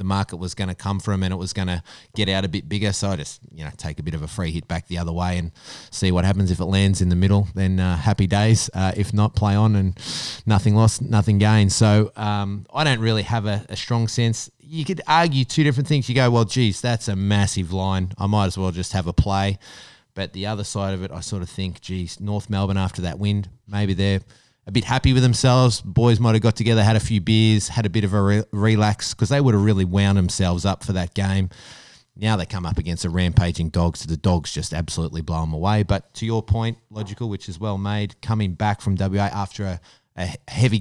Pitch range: 90-110 Hz